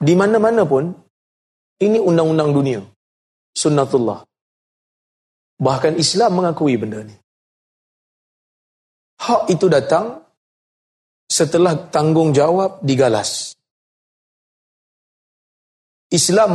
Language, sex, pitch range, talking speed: Malay, male, 135-180 Hz, 70 wpm